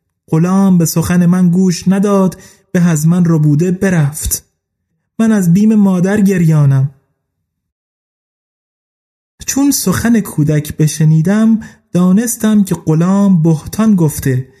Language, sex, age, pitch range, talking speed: Persian, male, 30-49, 150-190 Hz, 105 wpm